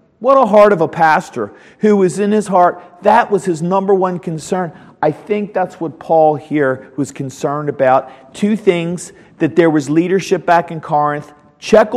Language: English